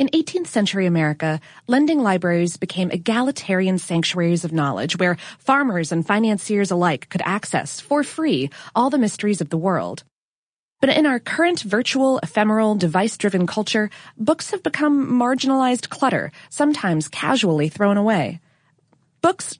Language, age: English, 20-39